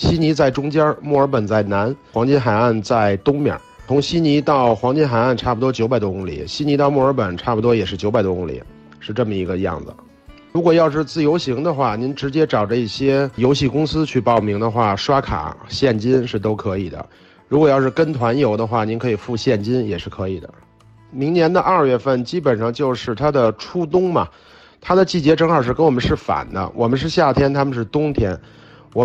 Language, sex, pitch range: Chinese, male, 110-150 Hz